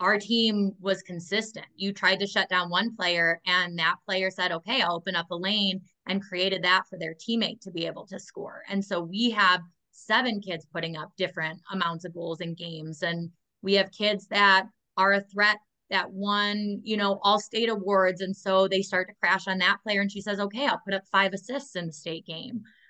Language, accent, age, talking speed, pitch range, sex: English, American, 20-39, 220 wpm, 180-210 Hz, female